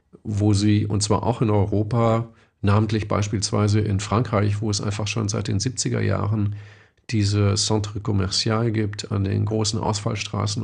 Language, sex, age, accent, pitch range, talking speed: German, male, 40-59, German, 100-115 Hz, 150 wpm